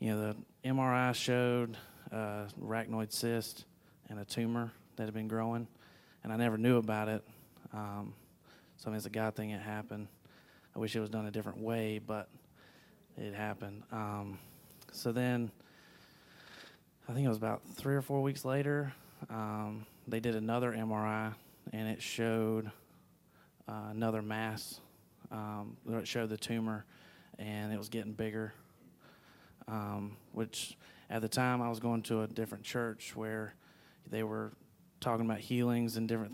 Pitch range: 105-115 Hz